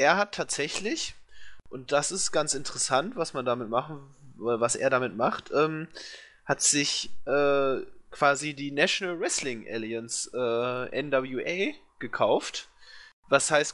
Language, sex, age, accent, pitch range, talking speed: German, male, 20-39, German, 120-145 Hz, 130 wpm